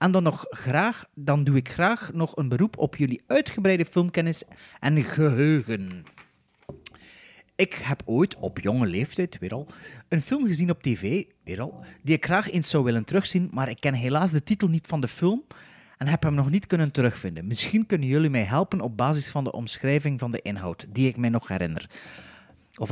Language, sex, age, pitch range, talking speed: Dutch, male, 30-49, 120-170 Hz, 190 wpm